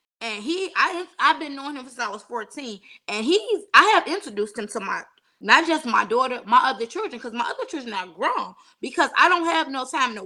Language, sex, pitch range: English, female, 220-315 Hz